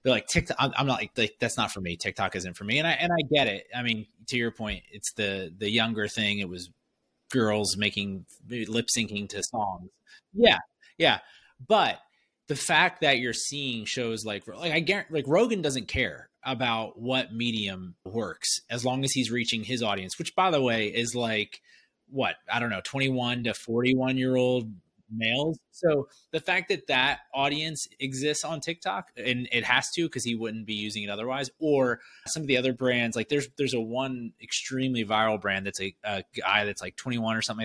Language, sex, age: English, male, 20-39